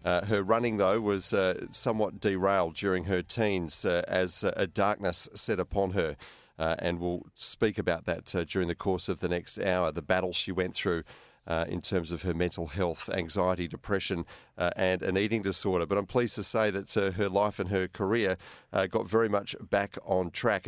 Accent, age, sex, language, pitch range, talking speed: Australian, 40-59, male, English, 90-110 Hz, 205 wpm